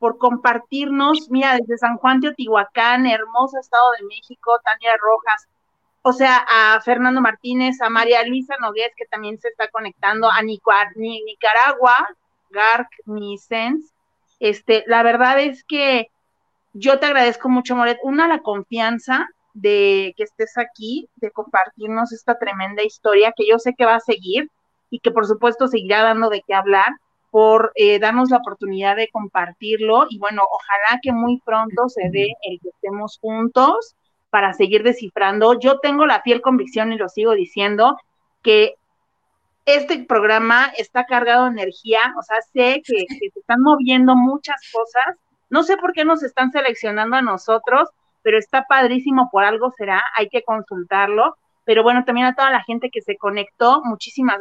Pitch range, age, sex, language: 215-255 Hz, 40-59, female, Spanish